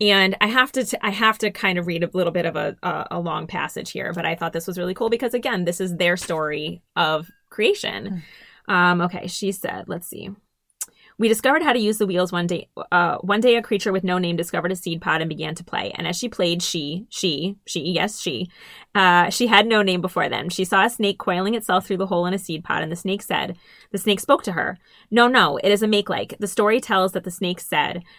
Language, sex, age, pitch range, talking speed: English, female, 20-39, 175-215 Hz, 250 wpm